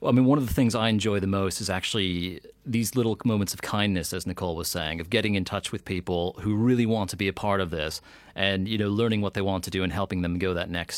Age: 30-49